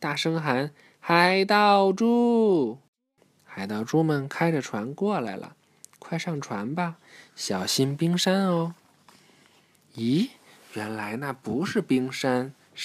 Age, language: 20-39, Chinese